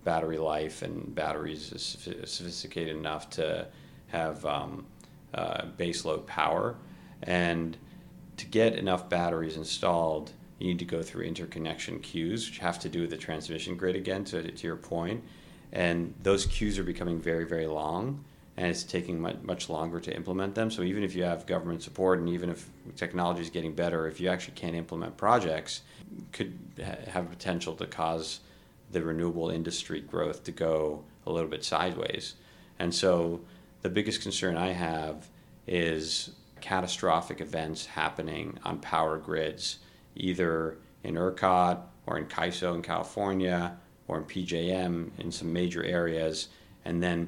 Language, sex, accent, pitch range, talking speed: English, male, American, 80-90 Hz, 155 wpm